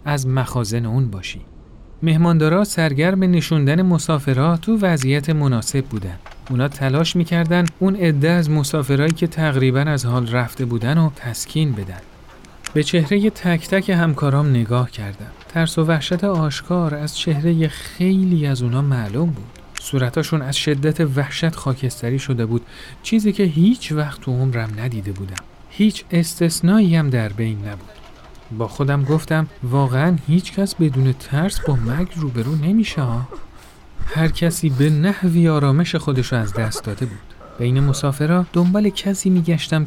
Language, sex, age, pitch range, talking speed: Persian, male, 40-59, 125-170 Hz, 145 wpm